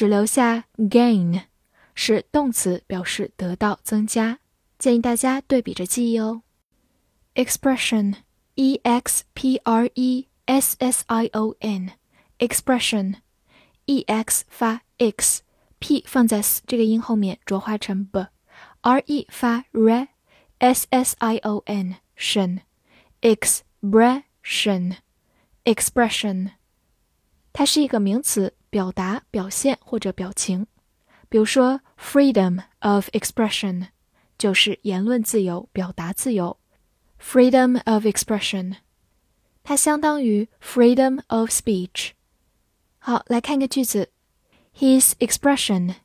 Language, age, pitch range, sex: Chinese, 10-29, 200-255 Hz, female